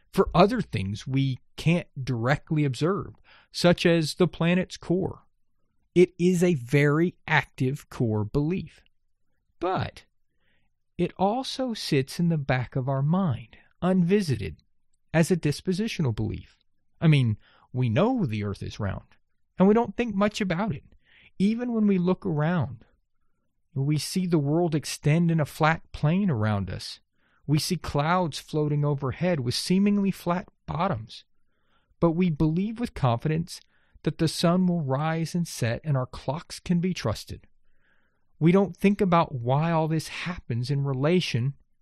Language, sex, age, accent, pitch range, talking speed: English, male, 40-59, American, 135-190 Hz, 145 wpm